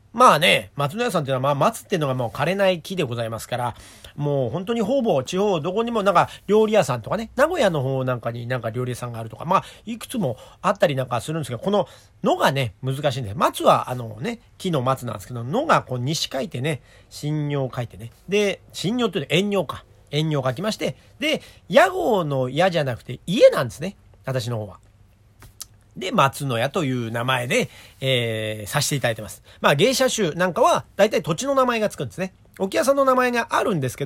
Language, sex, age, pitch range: Japanese, male, 40-59, 115-195 Hz